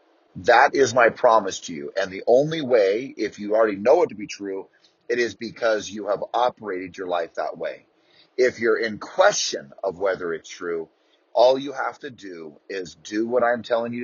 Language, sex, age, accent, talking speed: English, male, 30-49, American, 200 wpm